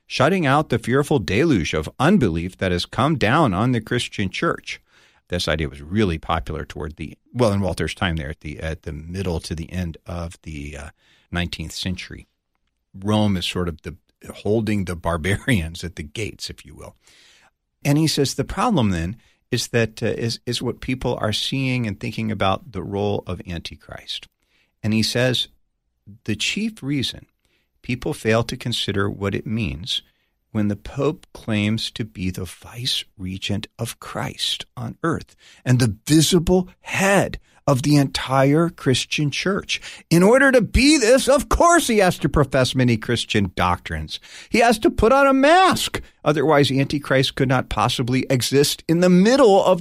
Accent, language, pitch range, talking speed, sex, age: American, English, 95-140 Hz, 170 wpm, male, 50-69